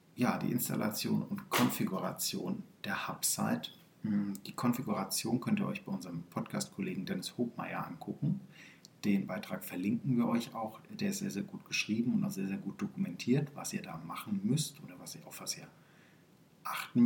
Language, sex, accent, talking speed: German, male, German, 170 wpm